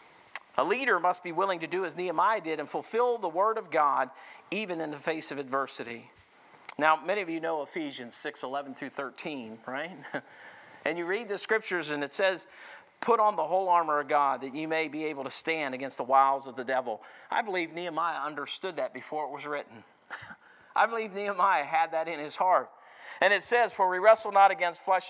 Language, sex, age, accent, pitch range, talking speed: English, male, 50-69, American, 155-200 Hz, 210 wpm